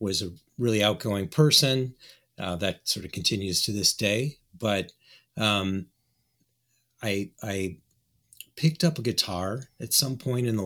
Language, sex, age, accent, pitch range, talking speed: English, male, 40-59, American, 95-120 Hz, 145 wpm